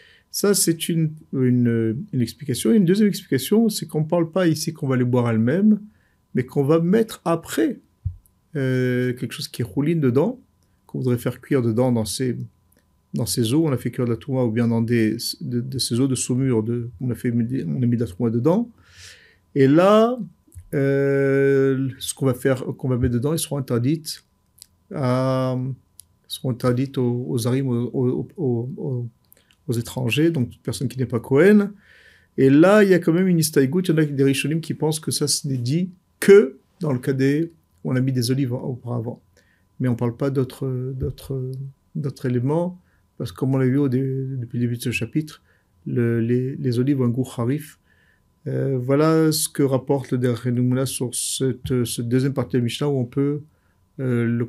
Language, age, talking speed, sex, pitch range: French, 50-69, 205 wpm, male, 120-145 Hz